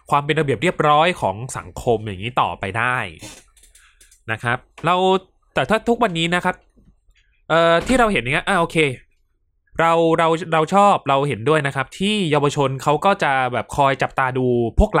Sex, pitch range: male, 110-160 Hz